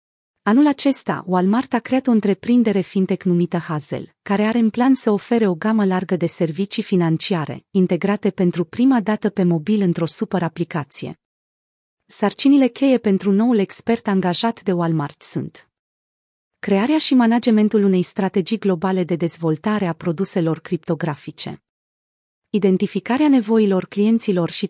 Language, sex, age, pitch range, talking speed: Romanian, female, 30-49, 180-215 Hz, 130 wpm